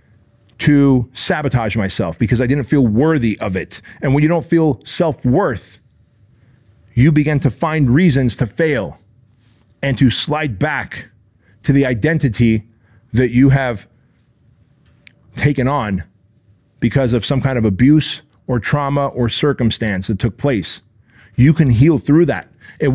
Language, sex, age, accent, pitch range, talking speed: English, male, 40-59, American, 115-150 Hz, 145 wpm